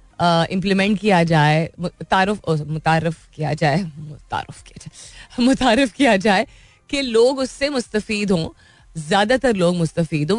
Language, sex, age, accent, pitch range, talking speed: Hindi, female, 30-49, native, 165-220 Hz, 115 wpm